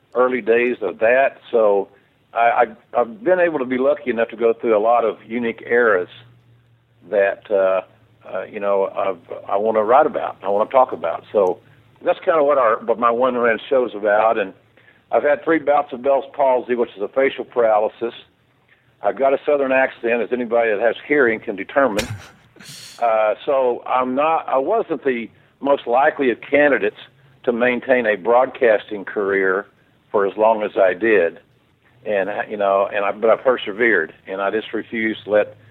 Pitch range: 115-140 Hz